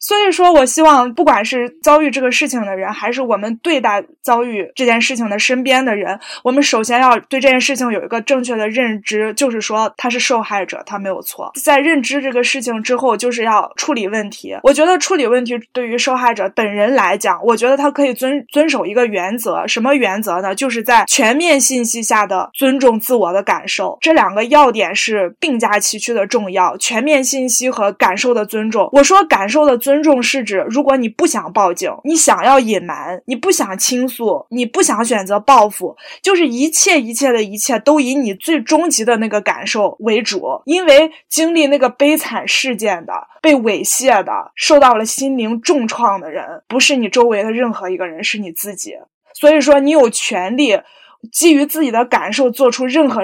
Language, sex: Chinese, female